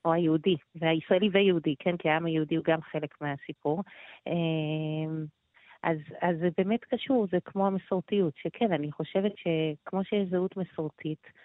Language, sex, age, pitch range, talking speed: Hebrew, female, 30-49, 165-200 Hz, 140 wpm